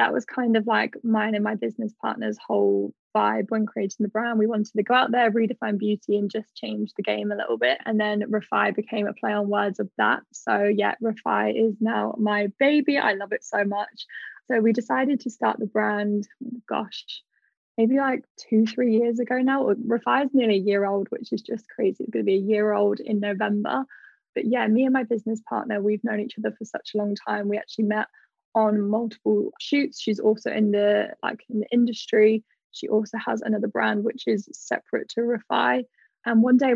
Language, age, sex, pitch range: English, 10-29, female, 210-235 Hz